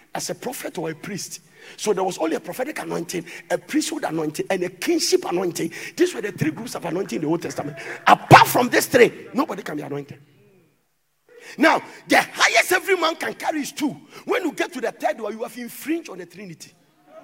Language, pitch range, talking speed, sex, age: English, 215-350 Hz, 210 wpm, male, 50-69